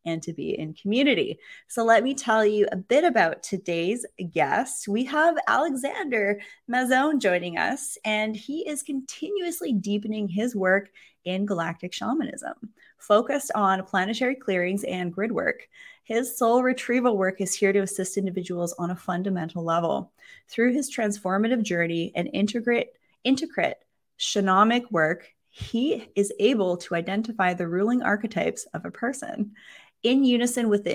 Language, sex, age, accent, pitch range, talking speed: English, female, 20-39, American, 180-235 Hz, 145 wpm